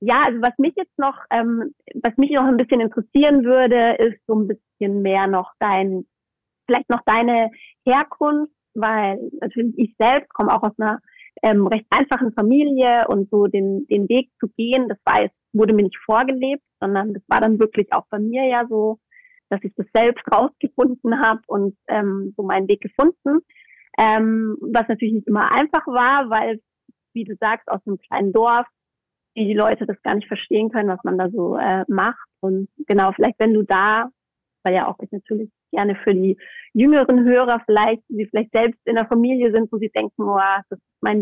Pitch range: 210-250 Hz